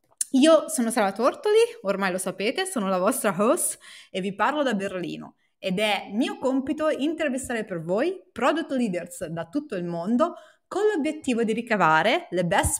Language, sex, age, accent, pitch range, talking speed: Italian, female, 20-39, native, 185-265 Hz, 165 wpm